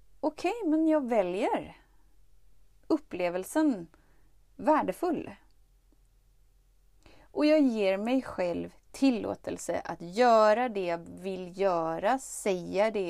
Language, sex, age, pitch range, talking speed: Swedish, female, 30-49, 180-240 Hz, 90 wpm